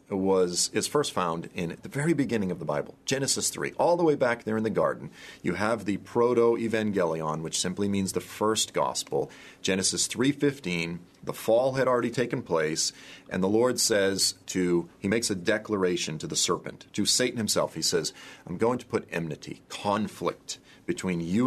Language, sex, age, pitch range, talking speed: English, male, 40-59, 90-120 Hz, 180 wpm